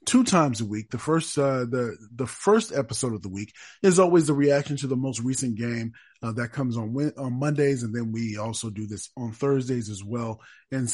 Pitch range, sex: 115-145 Hz, male